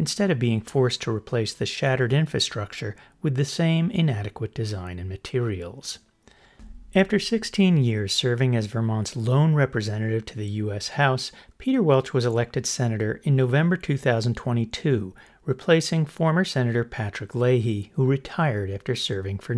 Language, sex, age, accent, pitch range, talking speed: English, male, 40-59, American, 110-155 Hz, 140 wpm